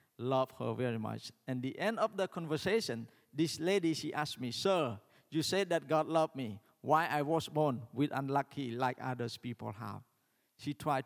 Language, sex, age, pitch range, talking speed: English, male, 50-69, 120-165 Hz, 185 wpm